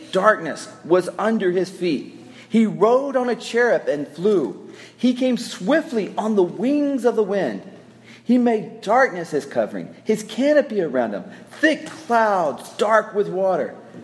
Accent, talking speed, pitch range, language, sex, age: American, 150 wpm, 170-230 Hz, English, male, 40-59